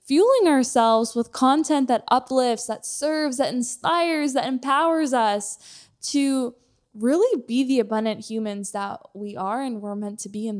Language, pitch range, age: English, 215-275 Hz, 10-29